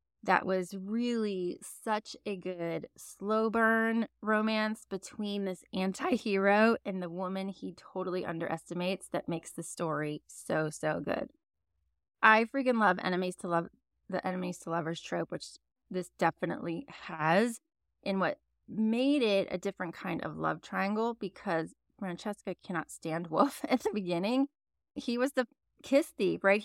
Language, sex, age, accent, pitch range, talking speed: English, female, 20-39, American, 170-220 Hz, 145 wpm